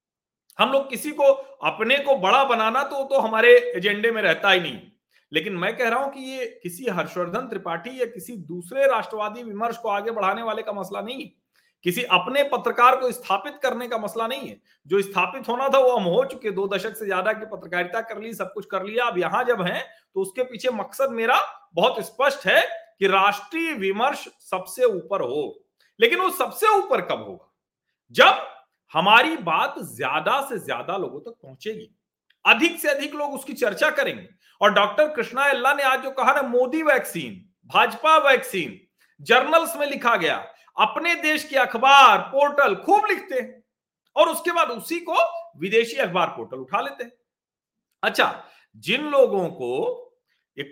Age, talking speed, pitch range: 40-59, 180 wpm, 200-275 Hz